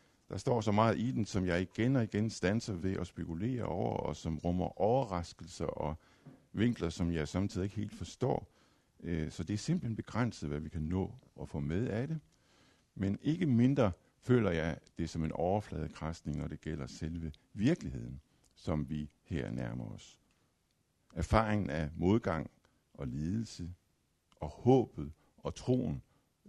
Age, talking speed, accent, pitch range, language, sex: 60-79, 160 wpm, native, 85-120 Hz, Danish, male